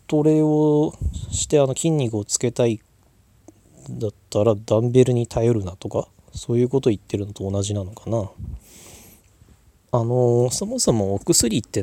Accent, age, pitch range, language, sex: native, 20-39, 100-130 Hz, Japanese, male